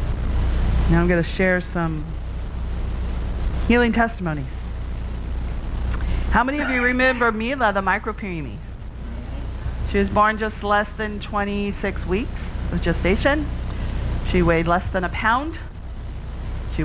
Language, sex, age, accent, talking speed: English, female, 40-59, American, 120 wpm